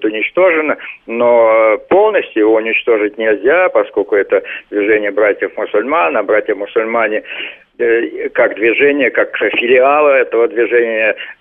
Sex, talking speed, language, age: male, 95 wpm, Russian, 50-69